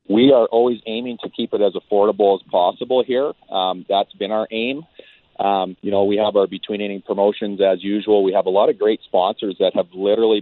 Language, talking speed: English, 215 wpm